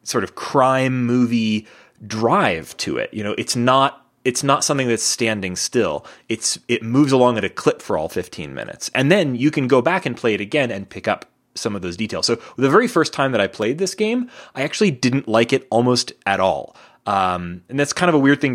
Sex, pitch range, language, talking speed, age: male, 110-155 Hz, English, 230 wpm, 20-39